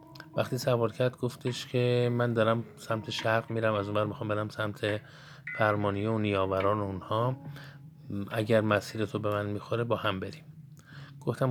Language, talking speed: Persian, 150 wpm